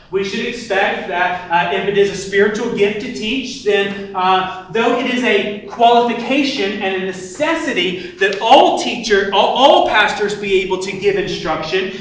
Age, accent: 30-49, American